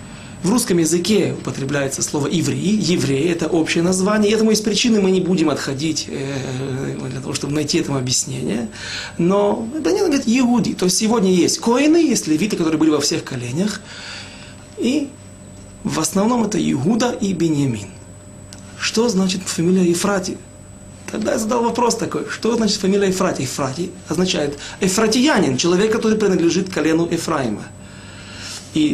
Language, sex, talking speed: Russian, male, 150 wpm